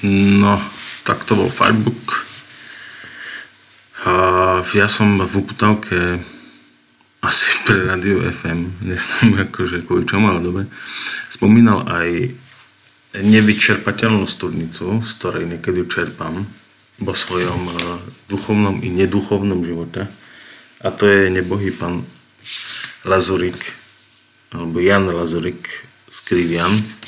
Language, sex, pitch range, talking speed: Slovak, male, 85-105 Hz, 100 wpm